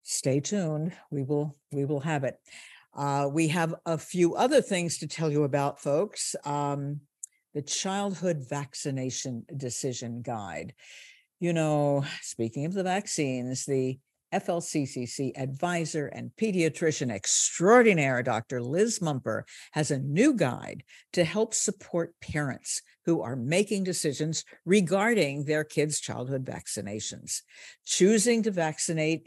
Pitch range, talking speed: 140-190 Hz, 125 wpm